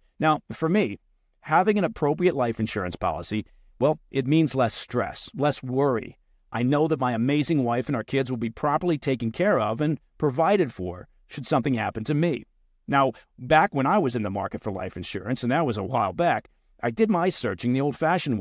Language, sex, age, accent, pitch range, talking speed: English, male, 50-69, American, 110-160 Hz, 200 wpm